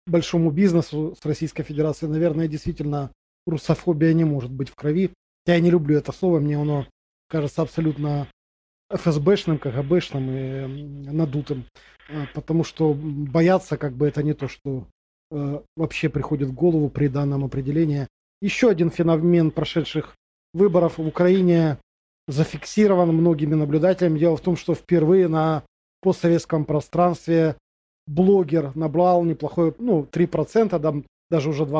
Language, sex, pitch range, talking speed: Russian, male, 150-175 Hz, 130 wpm